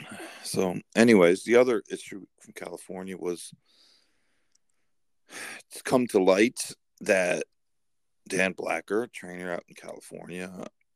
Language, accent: English, American